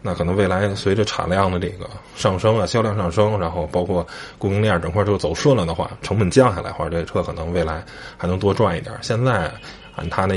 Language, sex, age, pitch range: Chinese, male, 20-39, 85-110 Hz